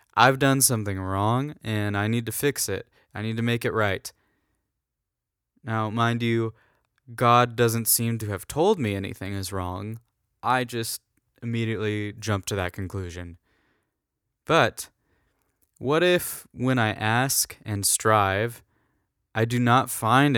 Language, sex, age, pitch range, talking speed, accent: English, male, 20-39, 105-125 Hz, 140 wpm, American